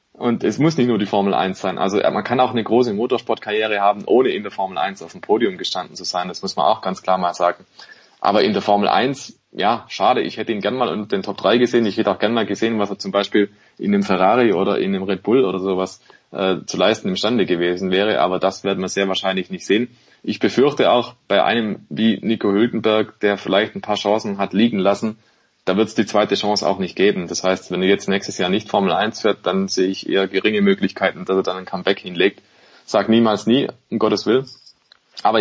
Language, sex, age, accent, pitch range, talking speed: German, male, 20-39, German, 95-110 Hz, 240 wpm